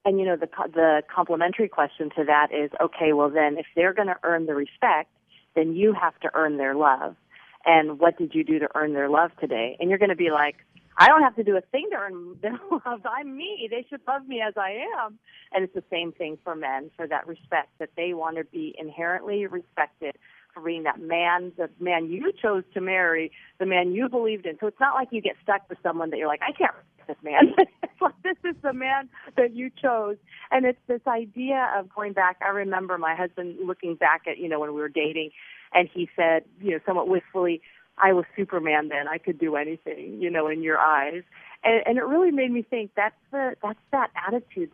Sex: female